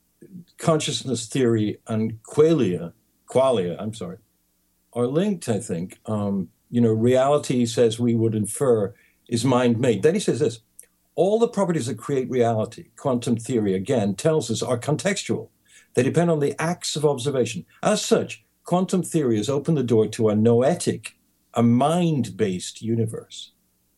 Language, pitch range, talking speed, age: English, 105-135 Hz, 155 wpm, 60-79